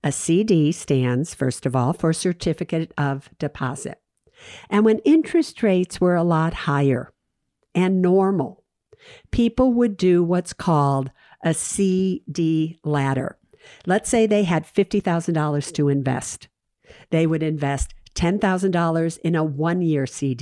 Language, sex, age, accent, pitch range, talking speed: English, female, 50-69, American, 150-190 Hz, 125 wpm